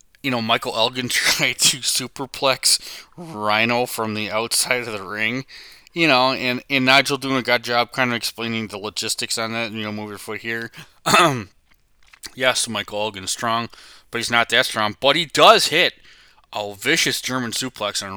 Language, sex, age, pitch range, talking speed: English, male, 20-39, 110-140 Hz, 180 wpm